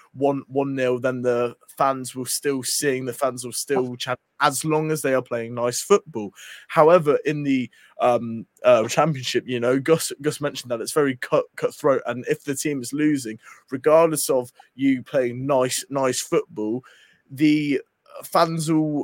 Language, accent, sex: English, British, male